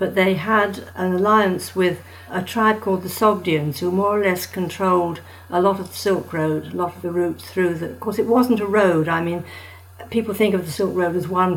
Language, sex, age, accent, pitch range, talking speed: English, female, 60-79, British, 155-195 Hz, 235 wpm